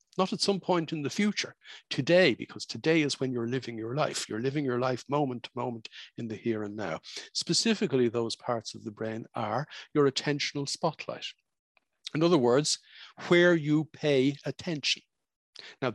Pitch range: 115-170 Hz